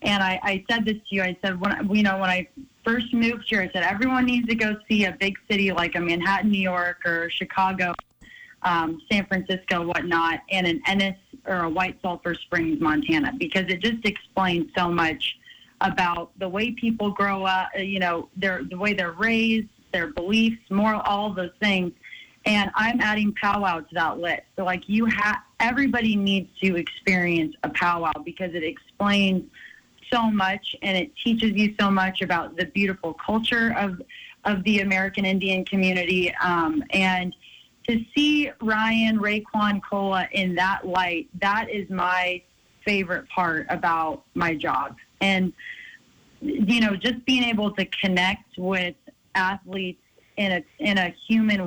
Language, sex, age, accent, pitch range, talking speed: English, female, 30-49, American, 180-215 Hz, 165 wpm